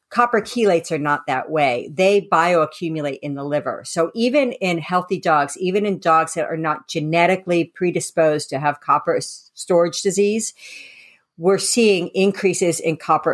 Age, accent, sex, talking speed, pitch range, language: 50-69, American, female, 155 wpm, 150-185 Hz, English